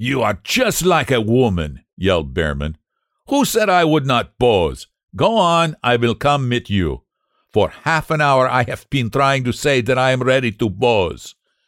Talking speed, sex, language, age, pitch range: 190 wpm, male, English, 60-79, 85-130 Hz